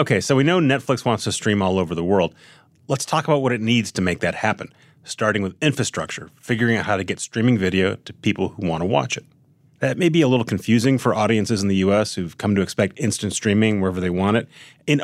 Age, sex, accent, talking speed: 30-49, male, American, 245 wpm